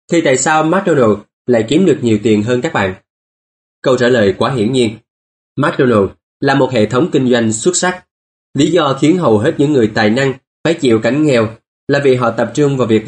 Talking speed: 215 wpm